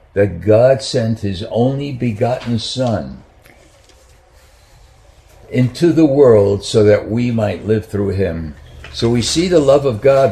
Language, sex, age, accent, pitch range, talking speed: English, male, 60-79, American, 100-130 Hz, 140 wpm